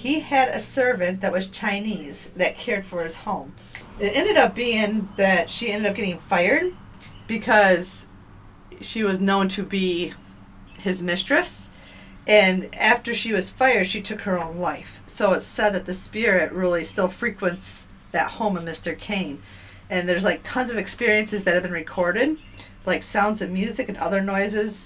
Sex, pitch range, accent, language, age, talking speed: female, 180-220 Hz, American, English, 30-49, 170 wpm